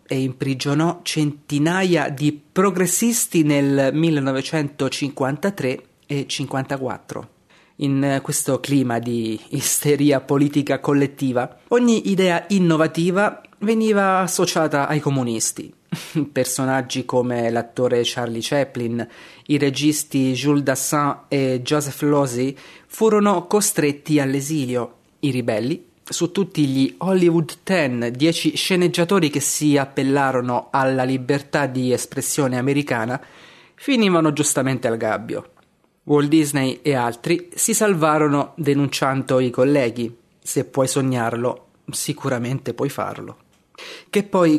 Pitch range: 130-165 Hz